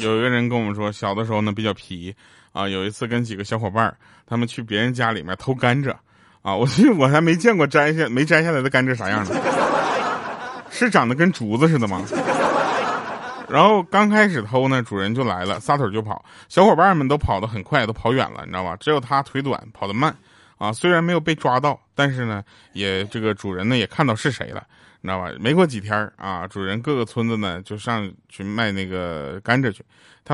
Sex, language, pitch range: male, Chinese, 105-150 Hz